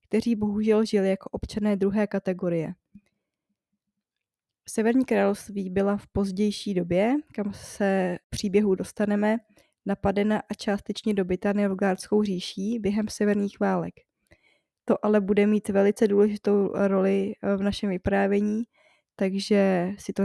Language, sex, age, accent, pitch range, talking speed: Czech, female, 20-39, native, 195-215 Hz, 115 wpm